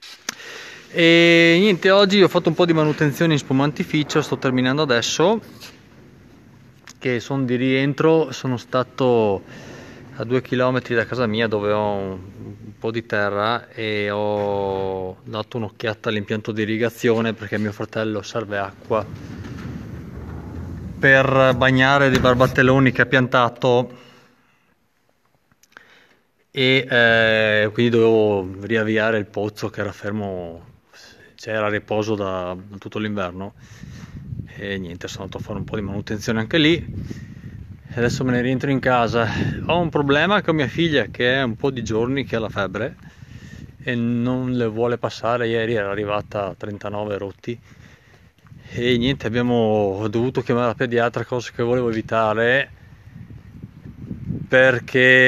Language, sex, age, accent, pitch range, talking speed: Italian, male, 20-39, native, 105-130 Hz, 135 wpm